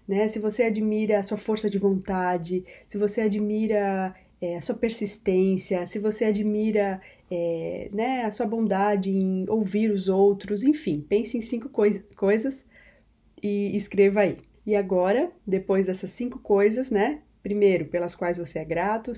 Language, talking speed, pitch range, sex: Portuguese, 145 wpm, 195-235 Hz, female